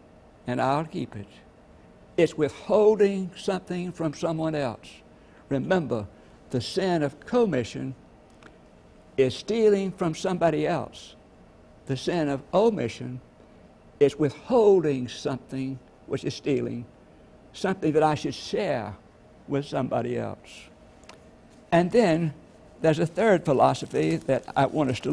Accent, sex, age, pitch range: American, male, 60-79, 125-175 Hz